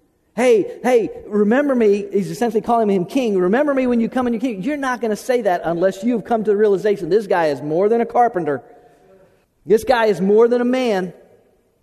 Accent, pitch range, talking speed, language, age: American, 165-210 Hz, 220 wpm, English, 50-69